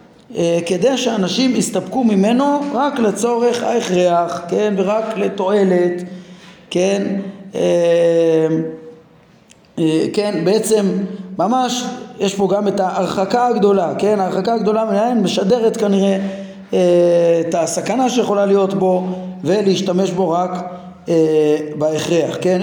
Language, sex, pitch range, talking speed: Hebrew, male, 170-205 Hz, 110 wpm